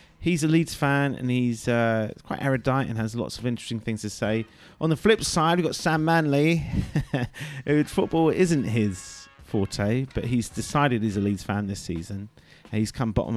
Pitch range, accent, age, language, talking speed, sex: 100-140 Hz, British, 30-49, English, 195 wpm, male